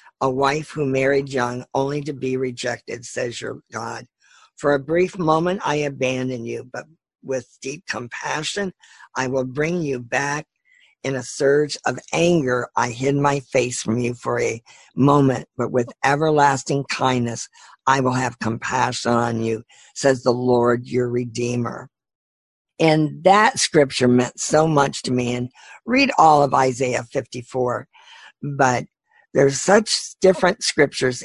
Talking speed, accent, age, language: 145 wpm, American, 50-69, English